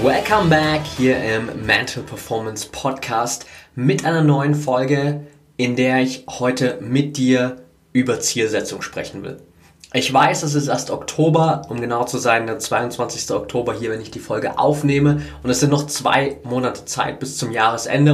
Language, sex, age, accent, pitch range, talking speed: German, male, 20-39, German, 120-145 Hz, 165 wpm